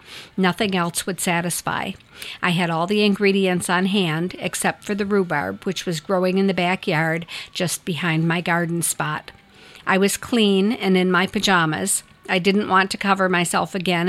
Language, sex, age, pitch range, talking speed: English, female, 50-69, 175-205 Hz, 170 wpm